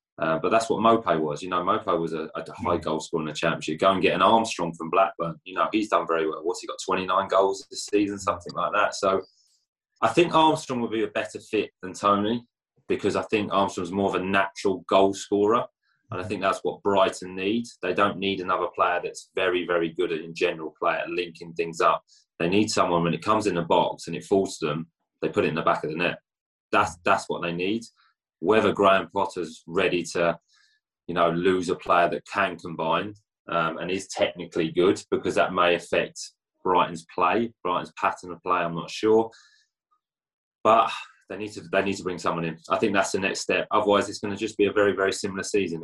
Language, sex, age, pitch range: English, male, 20-39, 85-110 Hz